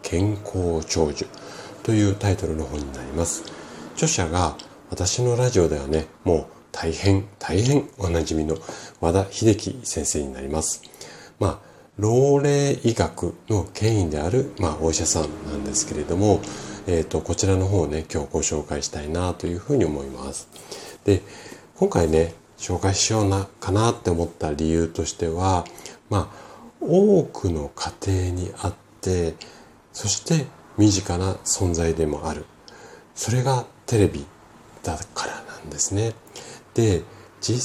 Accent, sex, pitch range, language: native, male, 80-110 Hz, Japanese